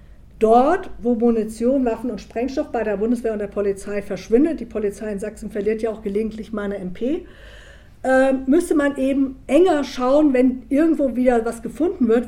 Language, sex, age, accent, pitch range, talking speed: German, female, 50-69, German, 225-270 Hz, 165 wpm